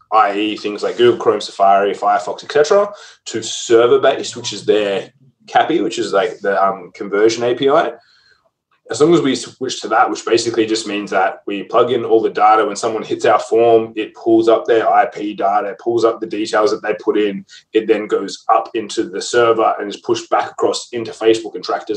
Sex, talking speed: male, 205 wpm